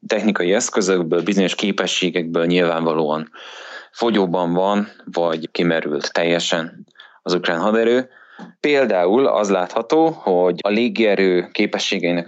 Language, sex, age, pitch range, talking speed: Hungarian, male, 20-39, 85-100 Hz, 100 wpm